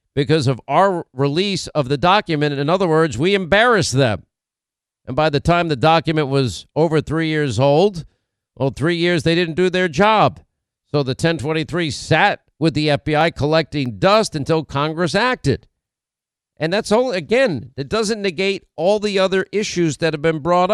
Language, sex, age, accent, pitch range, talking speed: English, male, 50-69, American, 140-180 Hz, 170 wpm